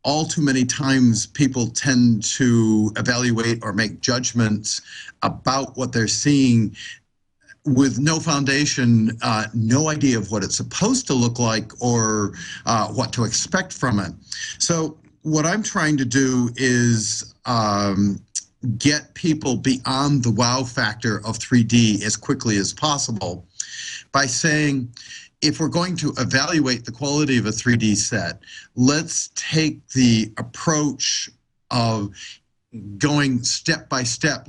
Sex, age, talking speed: male, 50-69, 135 wpm